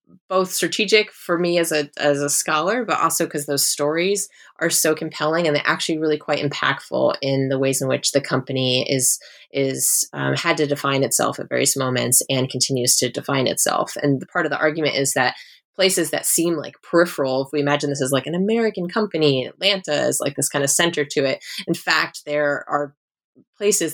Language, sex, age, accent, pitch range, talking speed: English, female, 20-39, American, 135-160 Hz, 205 wpm